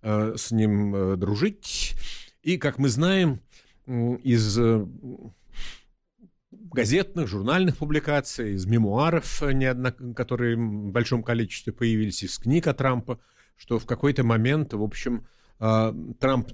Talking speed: 100 wpm